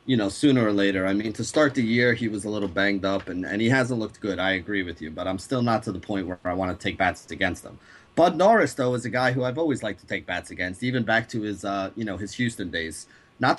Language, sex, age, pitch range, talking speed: English, male, 30-49, 100-125 Hz, 295 wpm